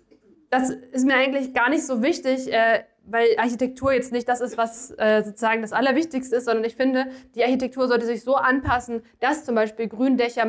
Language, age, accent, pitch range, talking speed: German, 20-39, German, 225-255 Hz, 185 wpm